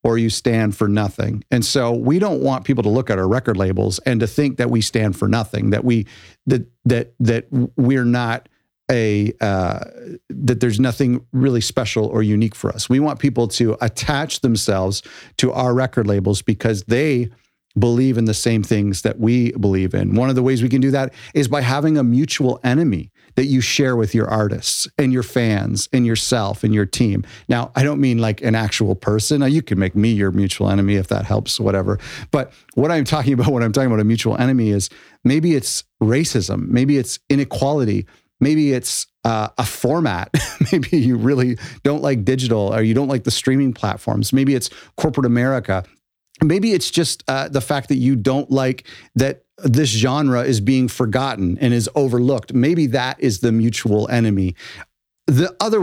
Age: 50-69